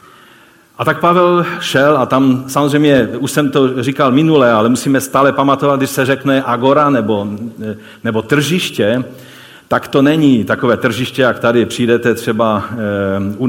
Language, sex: Czech, male